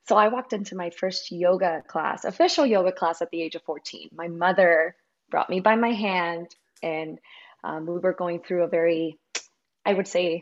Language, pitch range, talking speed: English, 175-220 Hz, 195 wpm